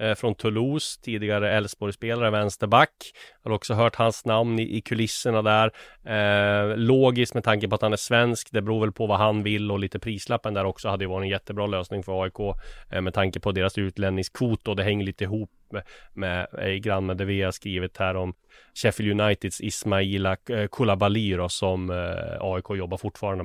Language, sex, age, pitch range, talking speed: Swedish, male, 30-49, 95-105 Hz, 190 wpm